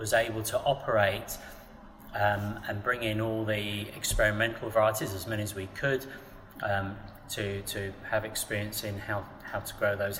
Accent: British